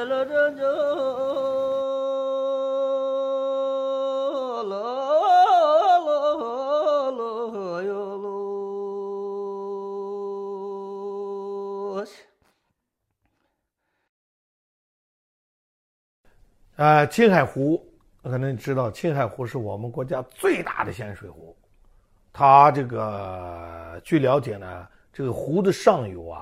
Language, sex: English, male